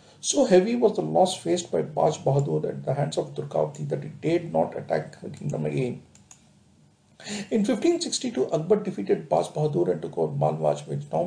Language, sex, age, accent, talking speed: English, male, 50-69, Indian, 180 wpm